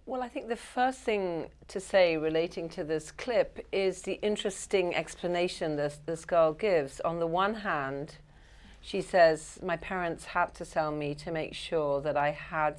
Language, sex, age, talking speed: English, female, 40-59, 180 wpm